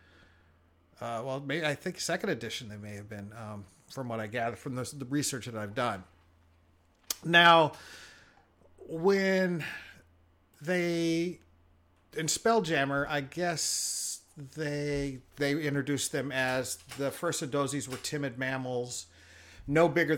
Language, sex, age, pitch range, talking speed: English, male, 40-59, 105-140 Hz, 125 wpm